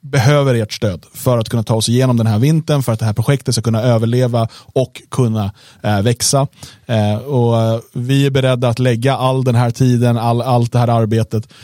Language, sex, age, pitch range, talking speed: Swedish, male, 30-49, 115-135 Hz, 195 wpm